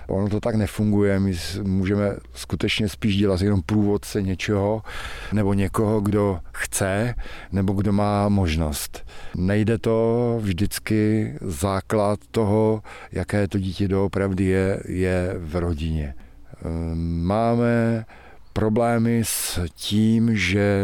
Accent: native